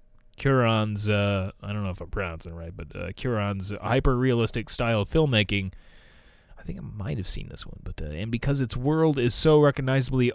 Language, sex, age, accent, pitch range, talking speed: English, male, 30-49, American, 100-135 Hz, 195 wpm